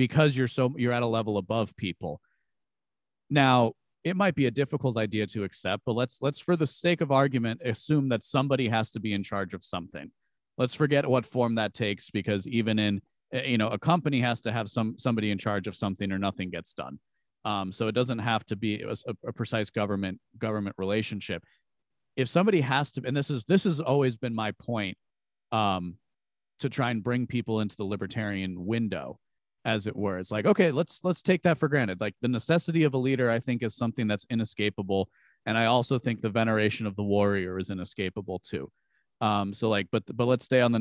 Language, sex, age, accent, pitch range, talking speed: English, male, 40-59, American, 105-135 Hz, 215 wpm